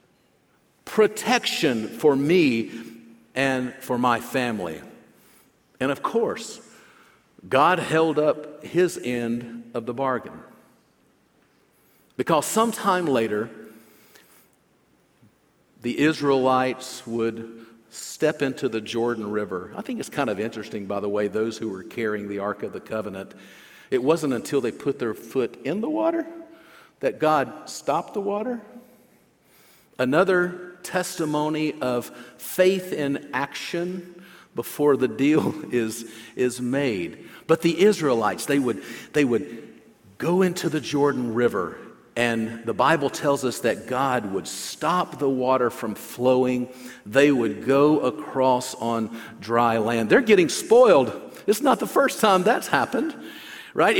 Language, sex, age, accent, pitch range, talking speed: English, male, 50-69, American, 115-185 Hz, 130 wpm